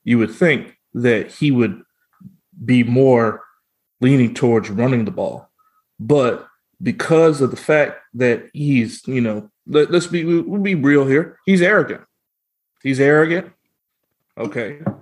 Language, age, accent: English, 30-49, American